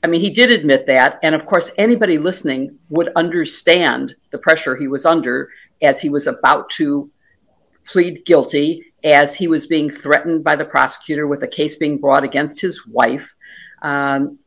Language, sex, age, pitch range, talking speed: English, female, 50-69, 145-200 Hz, 175 wpm